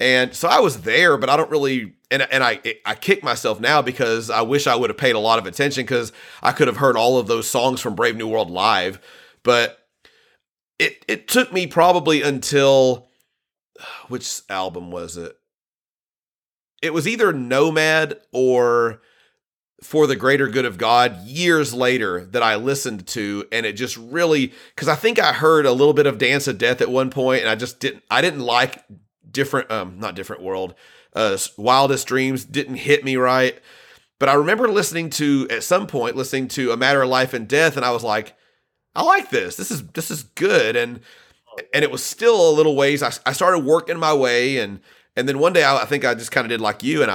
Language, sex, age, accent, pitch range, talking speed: English, male, 40-59, American, 120-155 Hz, 210 wpm